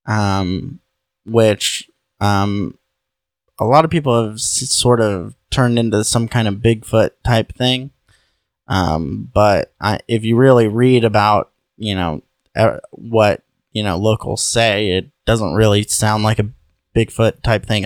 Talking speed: 150 wpm